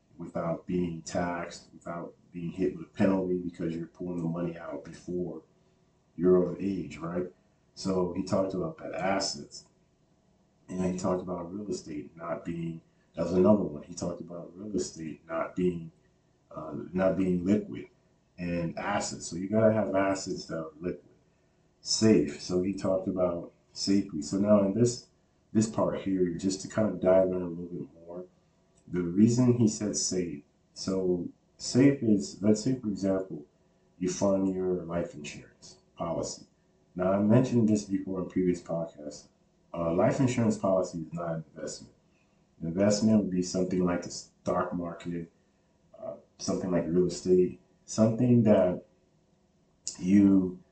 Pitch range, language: 85-100 Hz, English